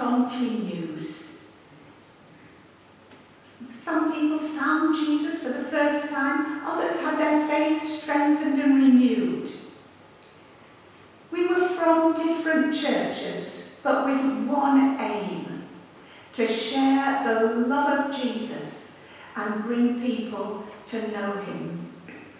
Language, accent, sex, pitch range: English, British, female, 235-310 Hz